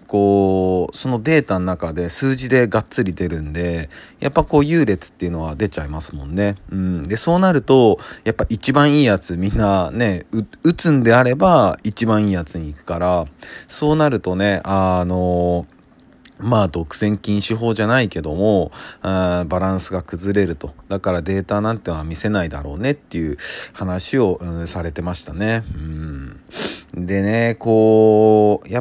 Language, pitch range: Japanese, 85-110 Hz